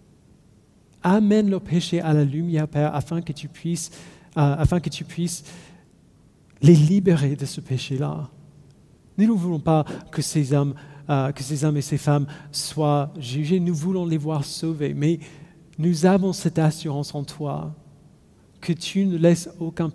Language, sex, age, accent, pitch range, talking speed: French, male, 40-59, French, 140-170 Hz, 160 wpm